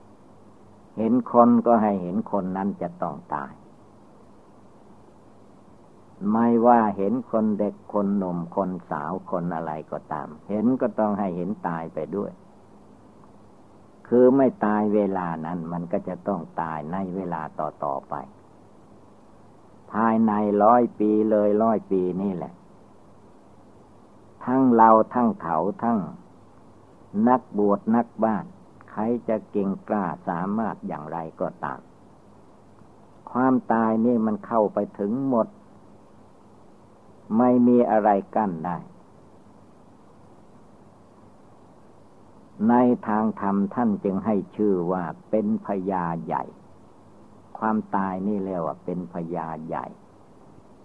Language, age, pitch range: Thai, 60-79, 95-115 Hz